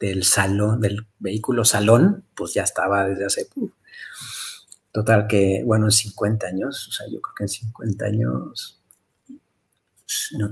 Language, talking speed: Spanish, 145 wpm